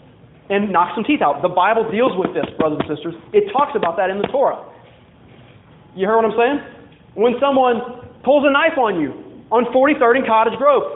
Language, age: English, 30-49